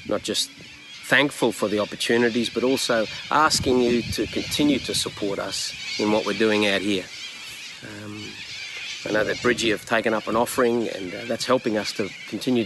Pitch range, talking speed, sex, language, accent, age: 105-125 Hz, 180 wpm, male, English, Australian, 40-59